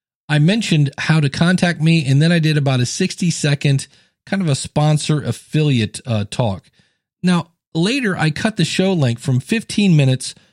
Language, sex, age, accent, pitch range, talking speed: English, male, 40-59, American, 125-170 Hz, 175 wpm